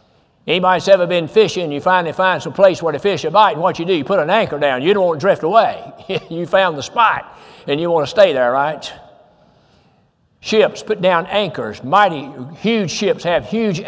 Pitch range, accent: 160-205 Hz, American